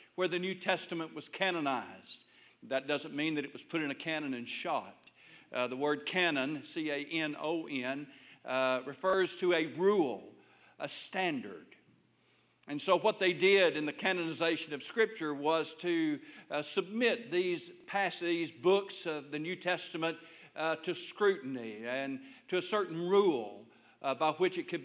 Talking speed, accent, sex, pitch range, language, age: 150 wpm, American, male, 145-180 Hz, English, 60-79